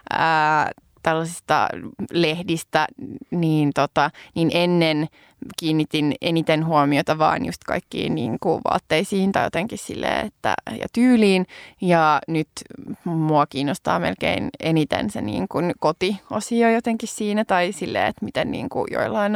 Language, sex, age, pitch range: Finnish, female, 20-39, 170-230 Hz